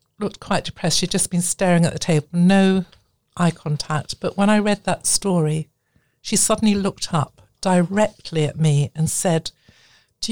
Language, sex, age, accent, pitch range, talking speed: English, female, 60-79, British, 150-180 Hz, 170 wpm